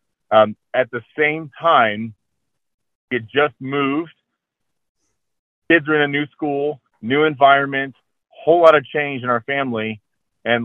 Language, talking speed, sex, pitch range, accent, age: English, 135 wpm, male, 110-130 Hz, American, 40-59